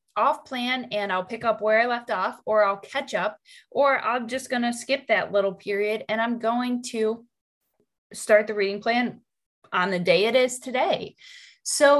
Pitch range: 205-250 Hz